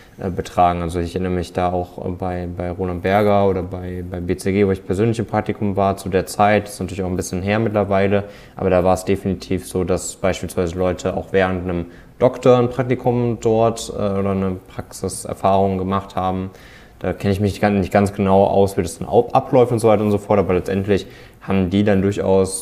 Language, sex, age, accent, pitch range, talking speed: German, male, 20-39, German, 90-100 Hz, 200 wpm